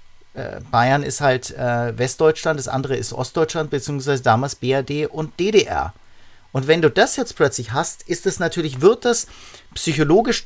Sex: male